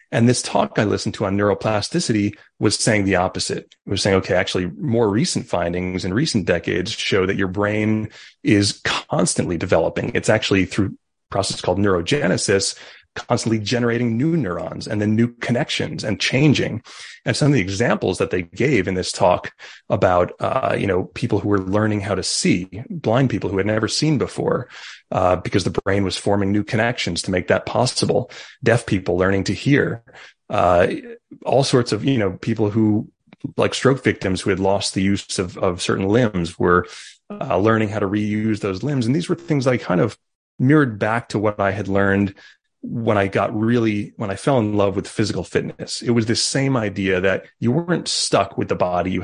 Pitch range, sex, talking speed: 95-115 Hz, male, 195 wpm